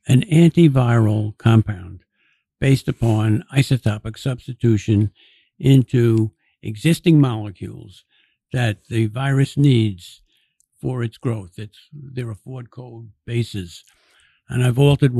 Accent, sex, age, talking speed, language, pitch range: American, male, 60-79, 105 wpm, English, 115-140 Hz